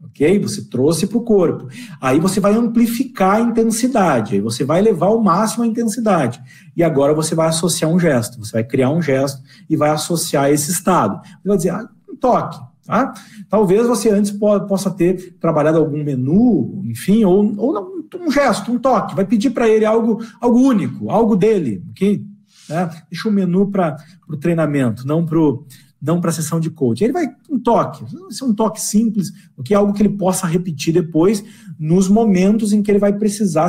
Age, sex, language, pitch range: 50-69, male, Portuguese, 155-205 Hz